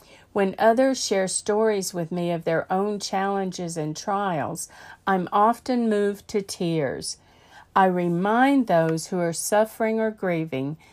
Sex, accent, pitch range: female, American, 180-240 Hz